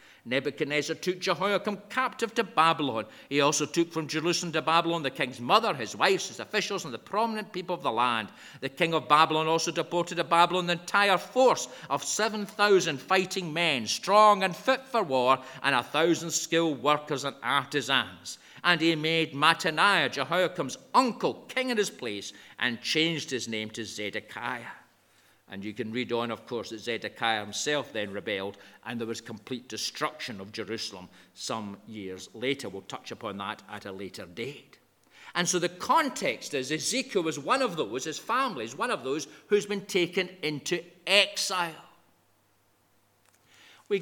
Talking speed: 165 wpm